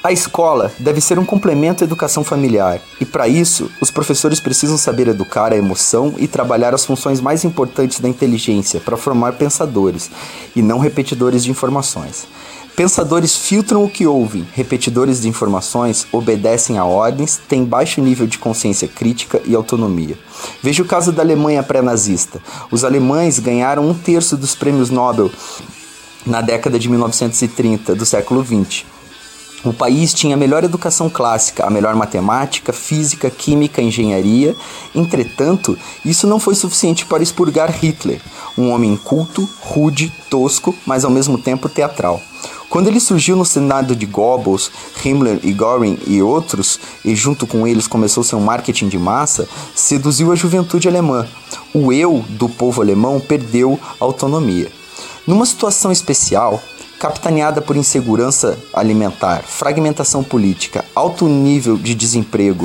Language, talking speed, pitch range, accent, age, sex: Portuguese, 145 wpm, 115-160 Hz, Brazilian, 30-49, male